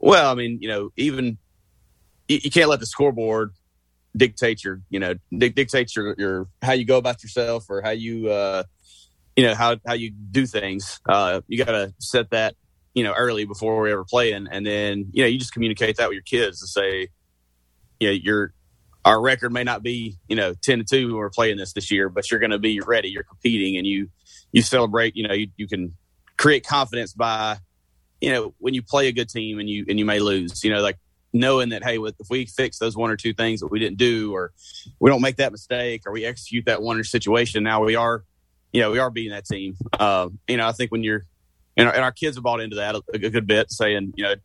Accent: American